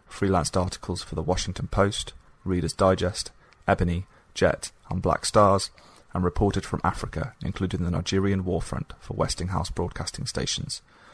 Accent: British